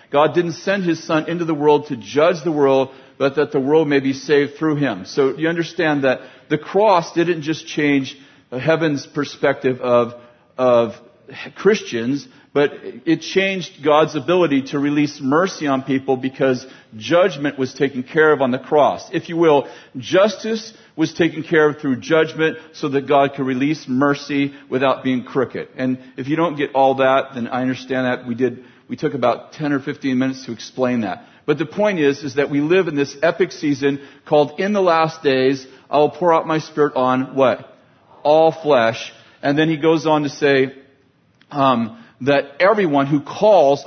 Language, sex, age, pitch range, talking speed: English, male, 40-59, 135-160 Hz, 185 wpm